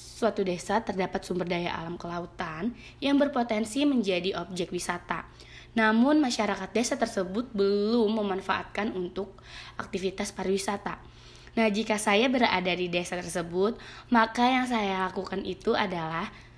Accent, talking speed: native, 125 wpm